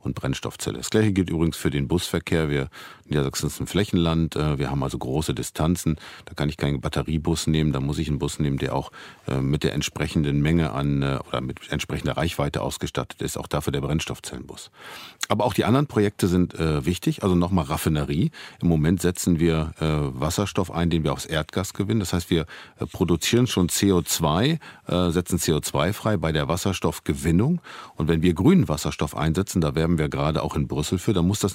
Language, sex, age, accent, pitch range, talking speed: German, male, 50-69, German, 75-100 Hz, 195 wpm